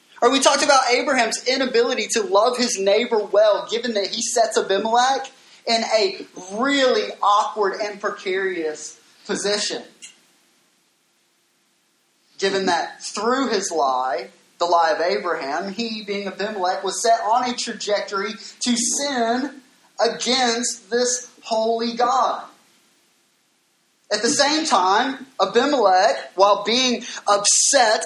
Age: 20-39